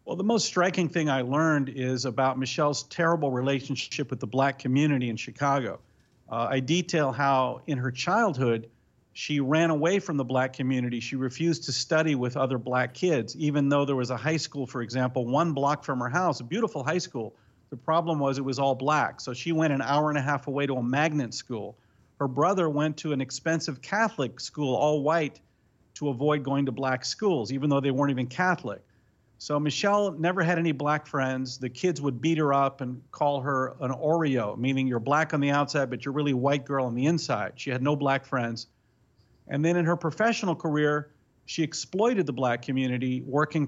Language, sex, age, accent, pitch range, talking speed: English, male, 50-69, American, 130-155 Hz, 205 wpm